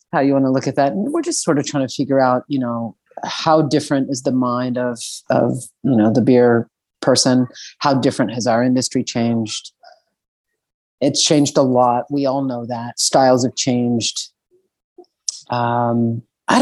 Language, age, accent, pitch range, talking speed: English, 40-59, American, 120-145 Hz, 175 wpm